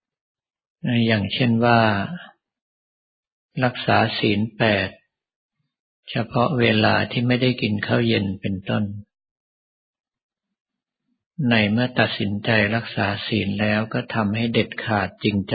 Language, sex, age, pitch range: Thai, male, 60-79, 105-120 Hz